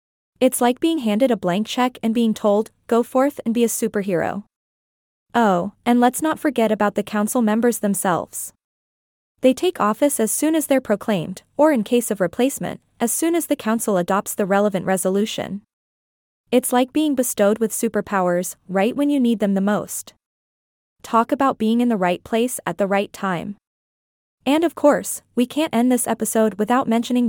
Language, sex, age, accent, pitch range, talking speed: English, female, 20-39, American, 205-255 Hz, 180 wpm